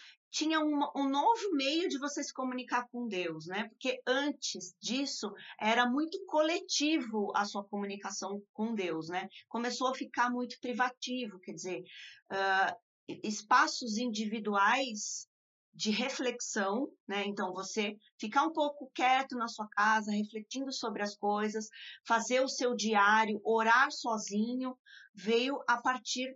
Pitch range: 210-265 Hz